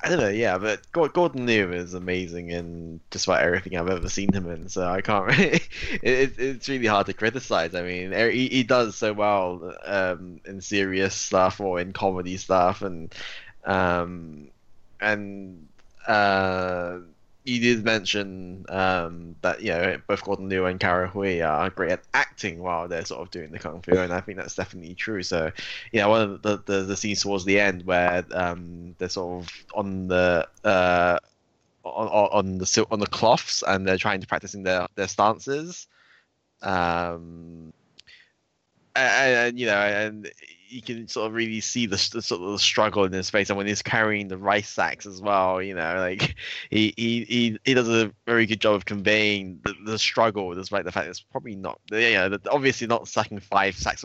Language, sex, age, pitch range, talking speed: English, male, 10-29, 90-110 Hz, 190 wpm